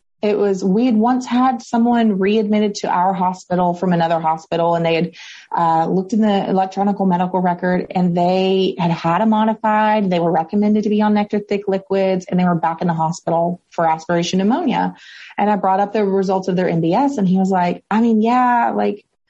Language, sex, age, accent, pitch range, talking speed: English, female, 30-49, American, 180-215 Hz, 205 wpm